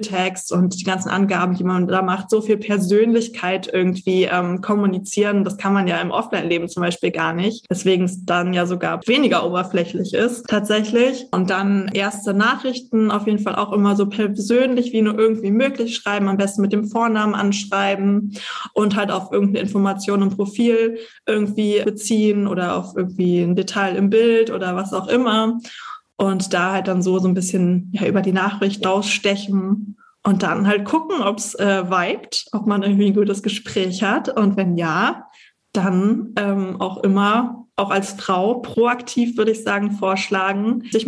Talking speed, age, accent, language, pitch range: 175 wpm, 20-39, German, German, 195-220 Hz